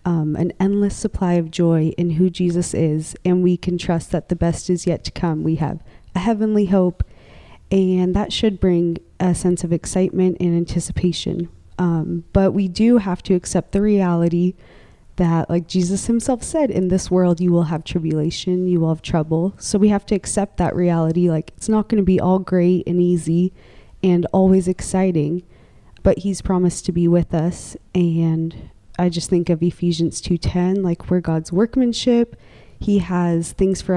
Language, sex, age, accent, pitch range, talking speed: English, female, 20-39, American, 170-190 Hz, 180 wpm